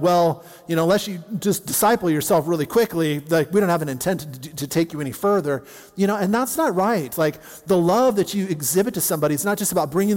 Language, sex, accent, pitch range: English, male, American, 150-185 Hz